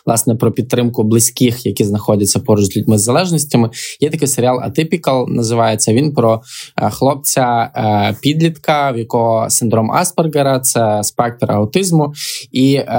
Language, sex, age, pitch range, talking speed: Ukrainian, male, 20-39, 115-140 Hz, 130 wpm